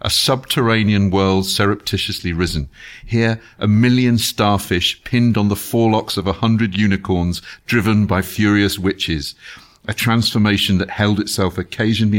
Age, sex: 50-69, male